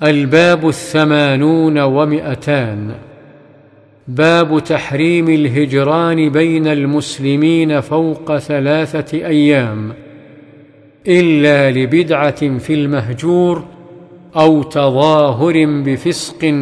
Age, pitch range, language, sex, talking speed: 50-69, 140-160 Hz, Arabic, male, 65 wpm